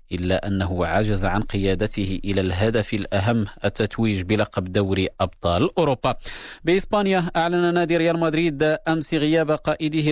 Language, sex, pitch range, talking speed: Arabic, male, 100-120 Hz, 125 wpm